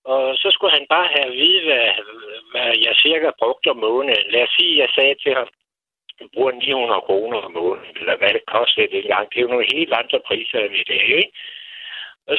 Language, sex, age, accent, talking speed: Danish, male, 60-79, native, 225 wpm